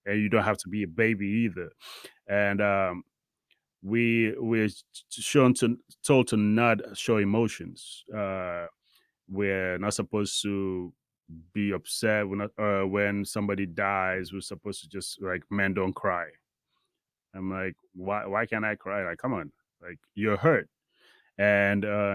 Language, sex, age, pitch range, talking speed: English, male, 30-49, 95-110 Hz, 145 wpm